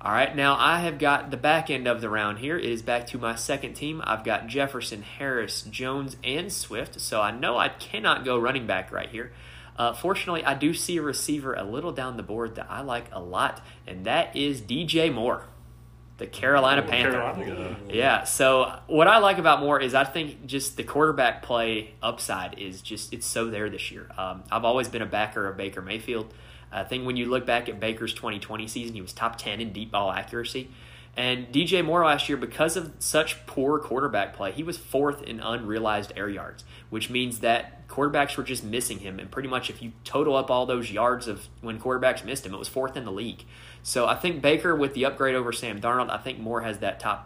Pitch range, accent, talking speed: 105-140 Hz, American, 220 wpm